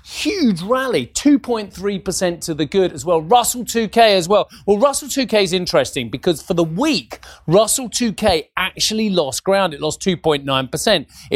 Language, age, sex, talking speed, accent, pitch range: English, 30-49, male, 155 wpm, British, 140-185 Hz